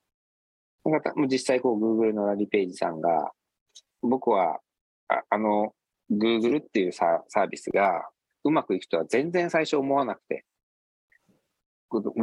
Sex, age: male, 40-59